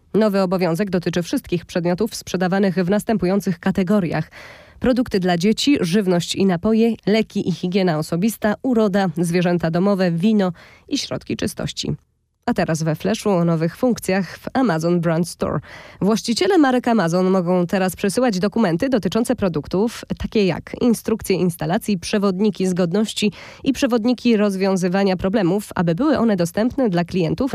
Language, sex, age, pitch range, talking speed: Polish, female, 20-39, 175-220 Hz, 135 wpm